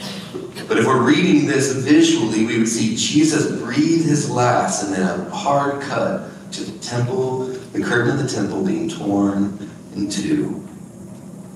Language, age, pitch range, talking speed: English, 30-49, 105-150 Hz, 155 wpm